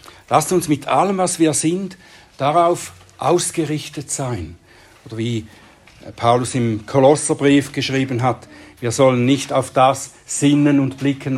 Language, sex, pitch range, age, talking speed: German, male, 130-175 Hz, 60-79, 130 wpm